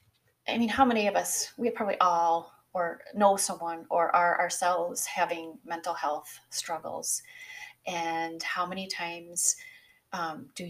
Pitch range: 165-215 Hz